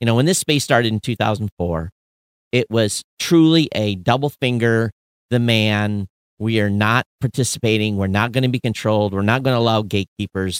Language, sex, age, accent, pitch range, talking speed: English, male, 40-59, American, 95-130 Hz, 180 wpm